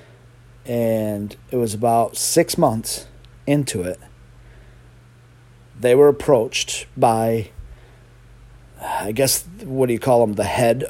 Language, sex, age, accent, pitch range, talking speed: English, male, 40-59, American, 110-130 Hz, 115 wpm